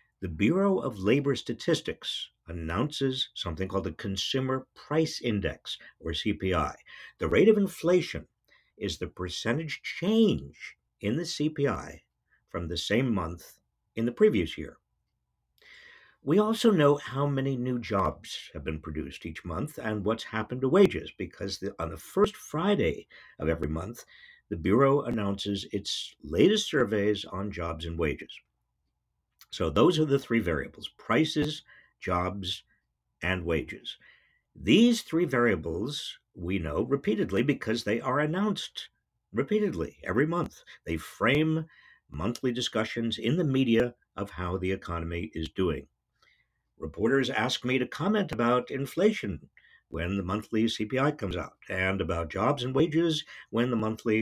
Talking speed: 140 wpm